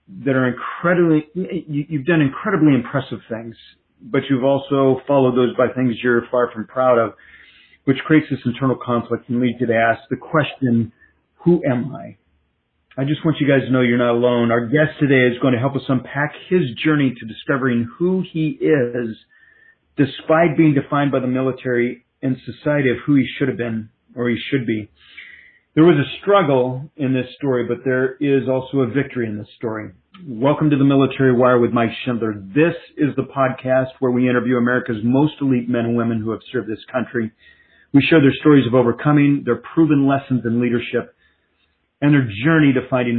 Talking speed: 190 wpm